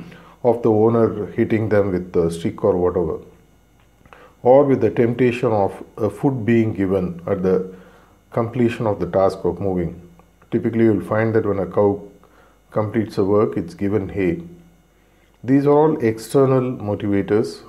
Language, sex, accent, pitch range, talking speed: English, male, Indian, 95-120 Hz, 155 wpm